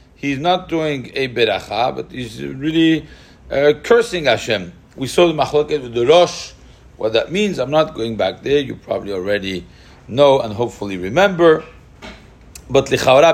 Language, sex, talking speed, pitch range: English, male, 155 wpm, 120-160 Hz